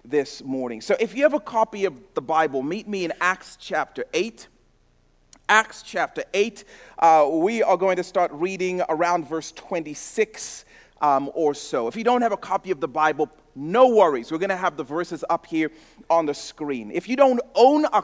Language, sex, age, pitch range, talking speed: English, male, 40-59, 145-200 Hz, 200 wpm